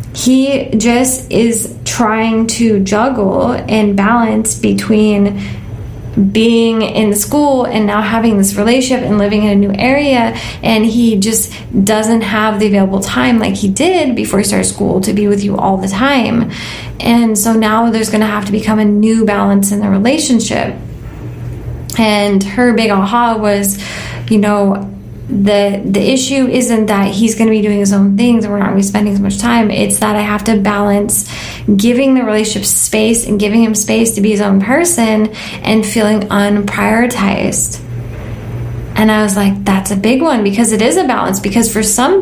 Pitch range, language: 200-230 Hz, English